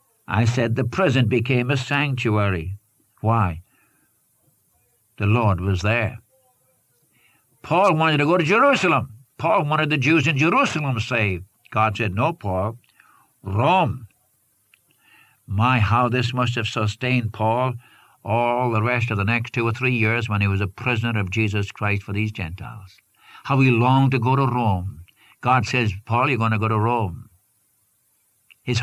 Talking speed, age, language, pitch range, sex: 155 wpm, 60-79, English, 105-130 Hz, male